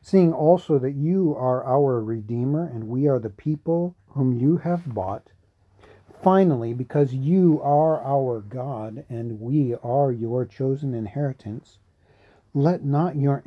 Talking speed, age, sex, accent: 140 wpm, 40-59, male, American